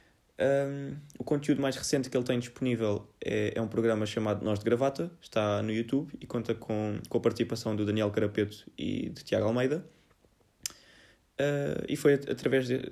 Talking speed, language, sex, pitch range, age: 165 wpm, Portuguese, male, 105-125 Hz, 20-39